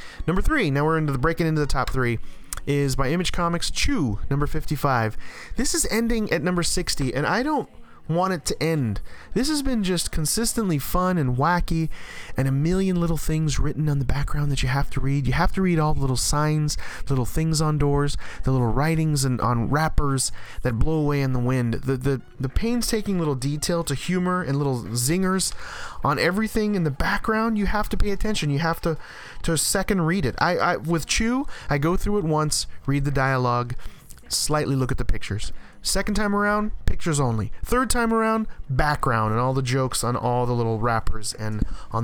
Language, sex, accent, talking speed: English, male, American, 205 wpm